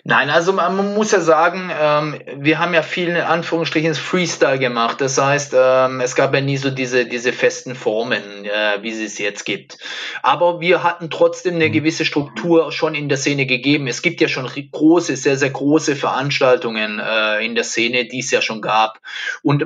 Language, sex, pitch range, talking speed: German, male, 130-160 Hz, 195 wpm